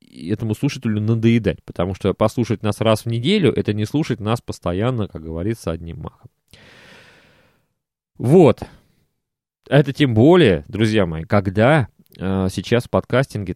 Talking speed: 135 wpm